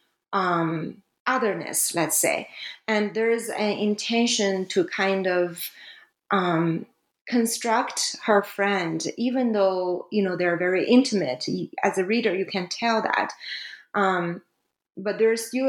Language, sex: English, female